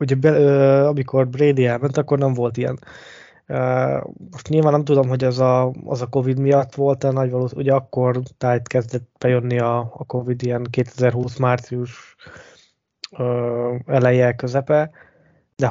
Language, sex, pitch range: Hungarian, male, 120-135 Hz